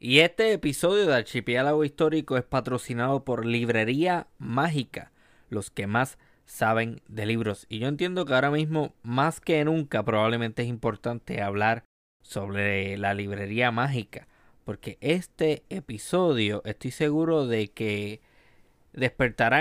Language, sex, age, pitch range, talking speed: Spanish, male, 20-39, 105-140 Hz, 130 wpm